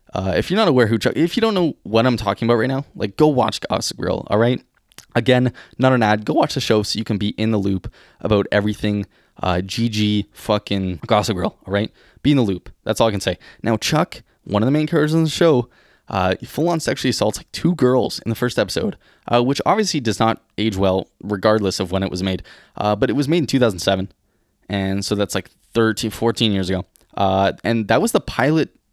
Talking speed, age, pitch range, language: 235 wpm, 20-39, 100-125 Hz, English